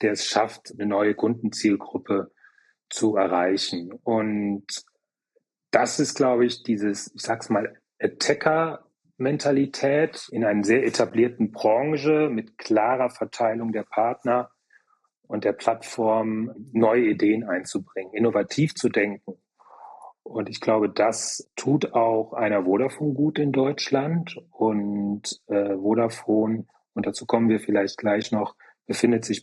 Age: 30-49